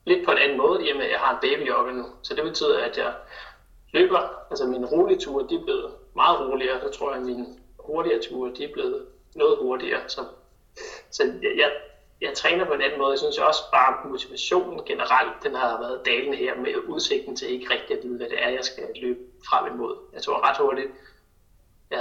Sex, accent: male, native